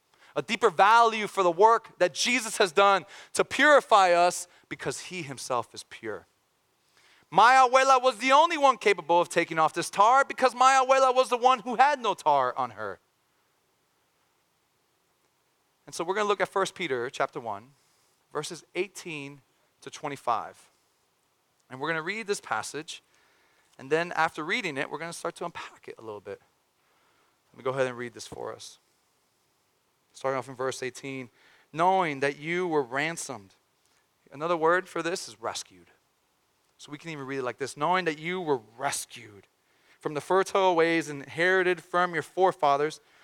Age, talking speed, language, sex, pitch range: 30-49, 175 wpm, English, male, 165-260 Hz